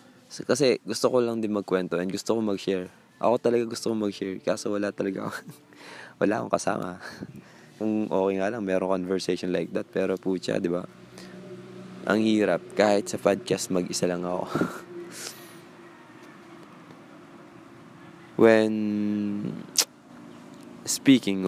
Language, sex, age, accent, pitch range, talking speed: Filipino, male, 20-39, native, 90-105 Hz, 125 wpm